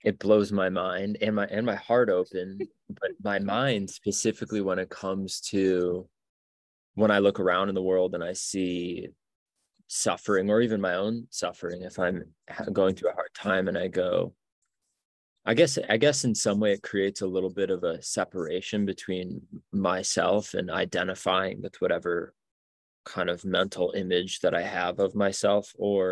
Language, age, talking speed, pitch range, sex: English, 20-39, 170 wpm, 95-115 Hz, male